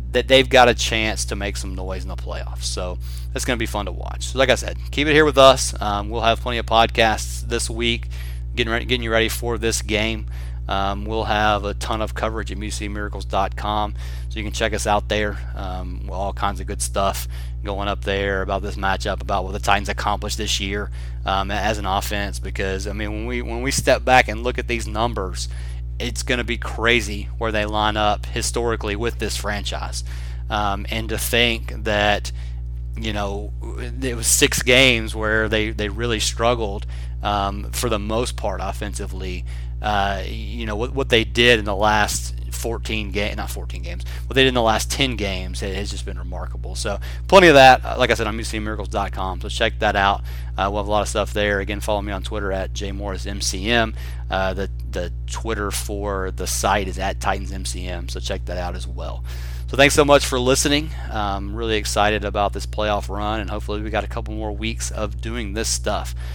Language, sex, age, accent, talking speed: English, male, 30-49, American, 210 wpm